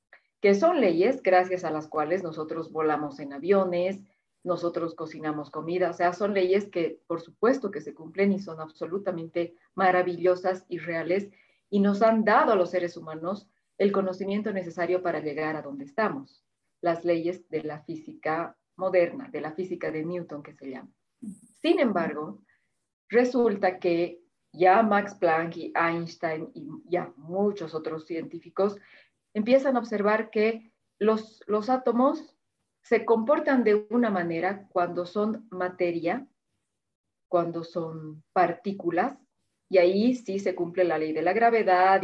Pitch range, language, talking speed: 170-210 Hz, Spanish, 145 wpm